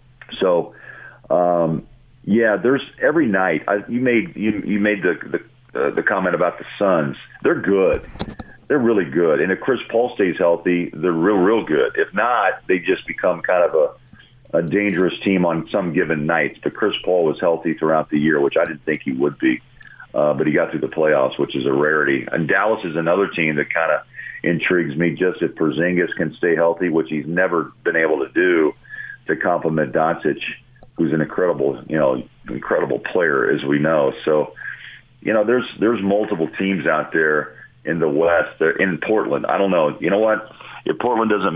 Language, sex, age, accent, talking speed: English, male, 50-69, American, 195 wpm